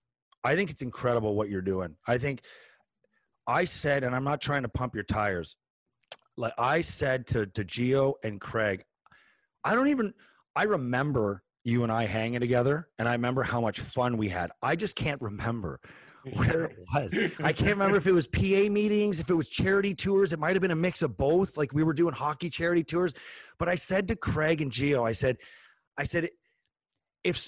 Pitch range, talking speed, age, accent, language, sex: 120-170 Hz, 200 wpm, 30-49, American, English, male